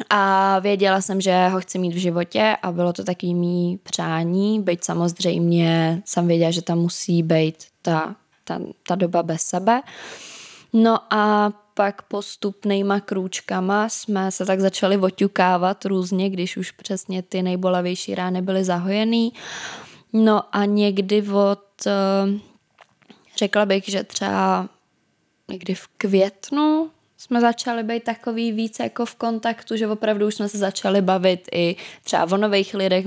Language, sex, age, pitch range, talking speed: Czech, female, 20-39, 175-200 Hz, 145 wpm